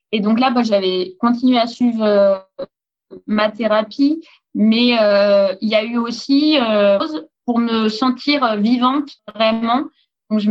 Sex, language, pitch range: female, French, 195-245 Hz